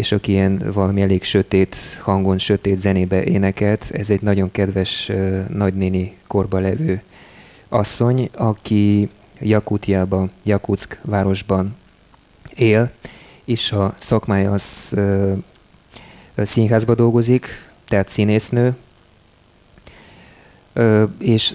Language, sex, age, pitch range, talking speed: Hungarian, male, 20-39, 95-110 Hz, 90 wpm